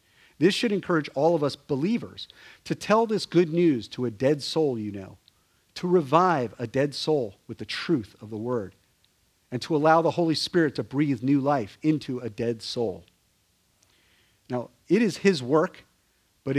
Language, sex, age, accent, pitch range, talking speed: English, male, 40-59, American, 110-155 Hz, 175 wpm